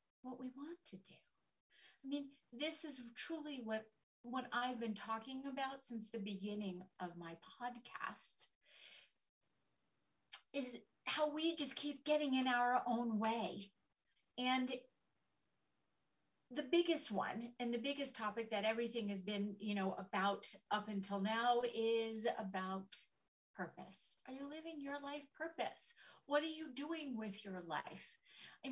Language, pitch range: English, 210-280 Hz